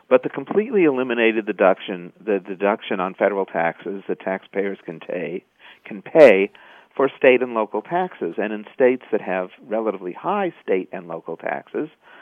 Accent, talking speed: American, 155 wpm